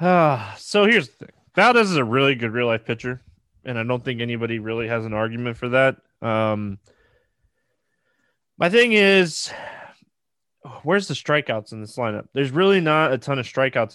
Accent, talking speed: American, 175 wpm